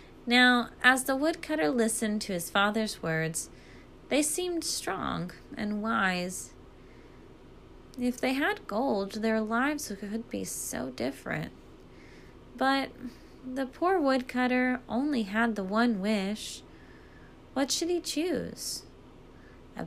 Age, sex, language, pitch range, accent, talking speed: 20-39, female, English, 195-255 Hz, American, 115 wpm